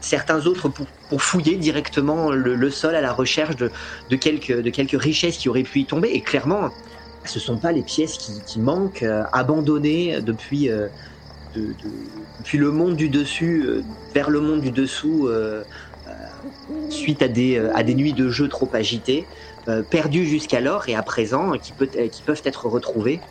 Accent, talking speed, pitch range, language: French, 200 wpm, 115-155 Hz, French